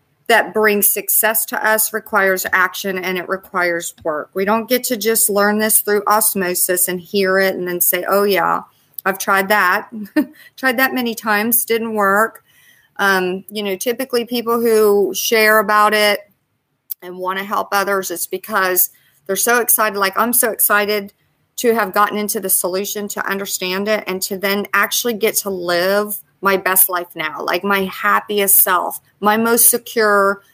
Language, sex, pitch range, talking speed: English, female, 185-215 Hz, 170 wpm